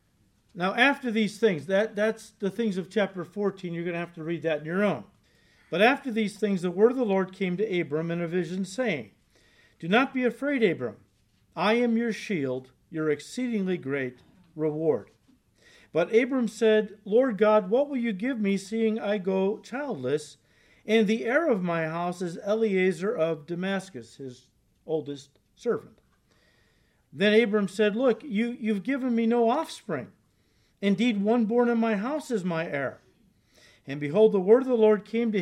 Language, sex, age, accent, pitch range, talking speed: English, male, 50-69, American, 160-220 Hz, 175 wpm